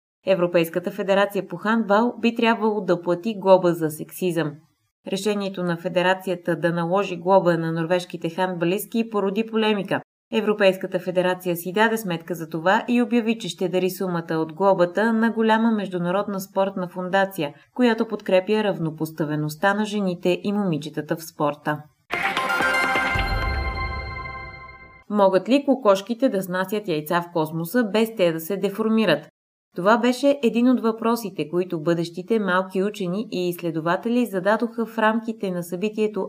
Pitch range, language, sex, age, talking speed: 170-215 Hz, Bulgarian, female, 20-39, 130 wpm